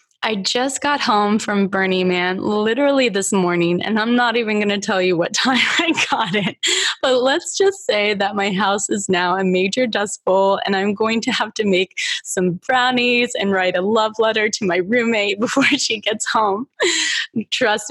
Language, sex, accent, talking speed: English, female, American, 195 wpm